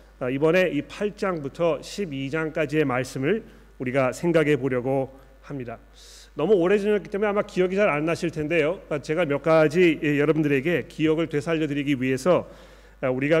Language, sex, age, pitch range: Korean, male, 40-59, 140-175 Hz